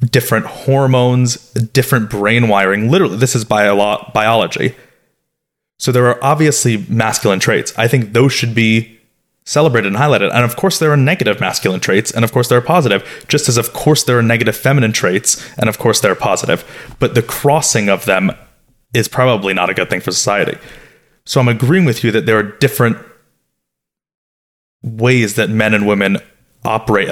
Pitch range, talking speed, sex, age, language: 110-130 Hz, 180 wpm, male, 30-49, English